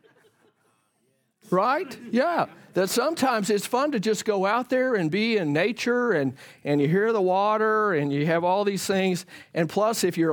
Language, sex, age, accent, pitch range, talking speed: English, male, 50-69, American, 150-195 Hz, 180 wpm